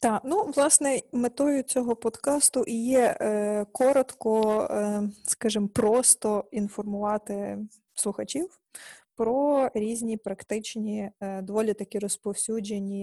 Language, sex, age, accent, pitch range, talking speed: Ukrainian, female, 20-39, native, 200-245 Hz, 95 wpm